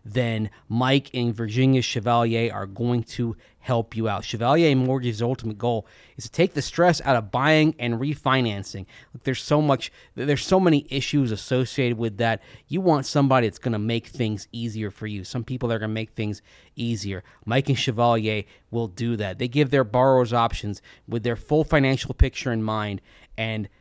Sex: male